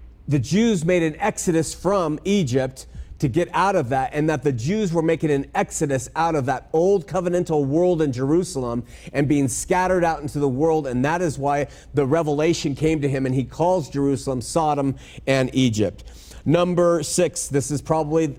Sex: male